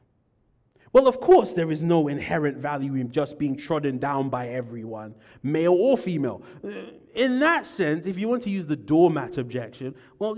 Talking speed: 175 wpm